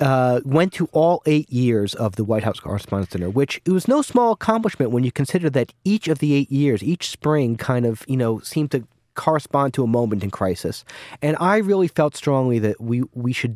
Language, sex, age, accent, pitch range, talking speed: English, male, 30-49, American, 105-145 Hz, 220 wpm